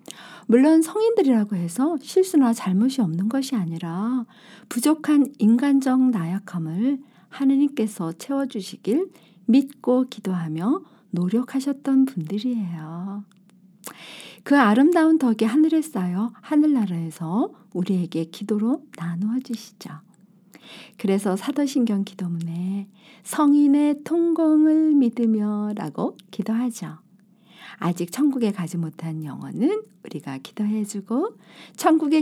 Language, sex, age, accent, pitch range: Korean, female, 50-69, native, 190-275 Hz